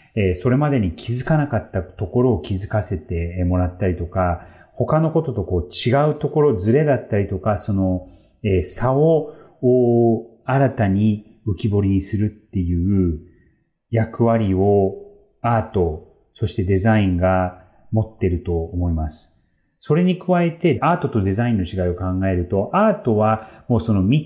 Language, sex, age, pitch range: Japanese, male, 40-59, 95-140 Hz